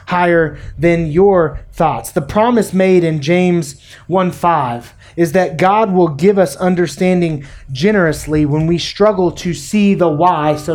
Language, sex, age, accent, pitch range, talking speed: English, male, 30-49, American, 150-200 Hz, 145 wpm